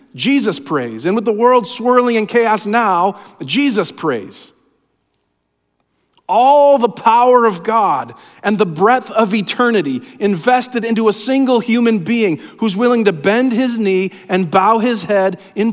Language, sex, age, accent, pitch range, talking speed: English, male, 40-59, American, 150-215 Hz, 150 wpm